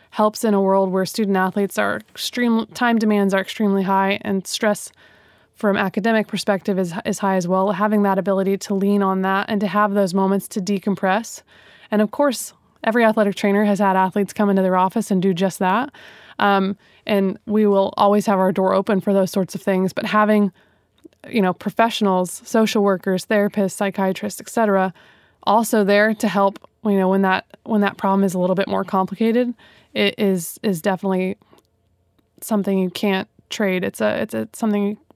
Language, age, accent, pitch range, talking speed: English, 20-39, American, 195-215 Hz, 185 wpm